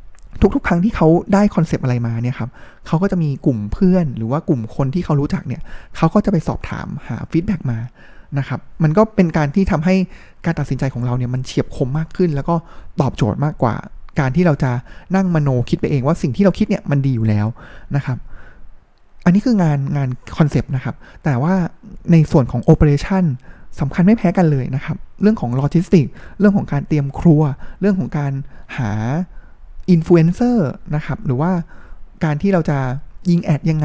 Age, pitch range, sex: 20-39, 135-180 Hz, male